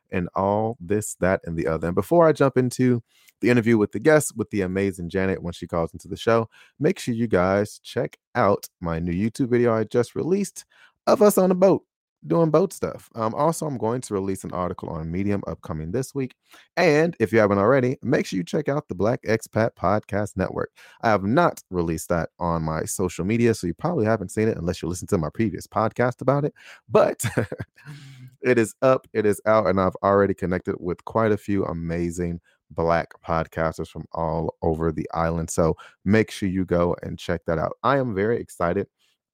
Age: 30-49